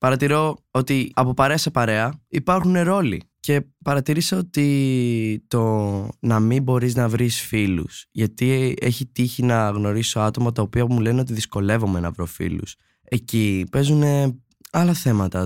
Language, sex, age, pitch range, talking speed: Greek, male, 20-39, 105-135 Hz, 145 wpm